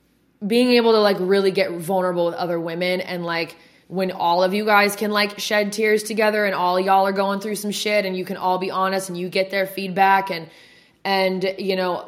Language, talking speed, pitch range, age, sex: English, 225 wpm, 180-205 Hz, 20-39, female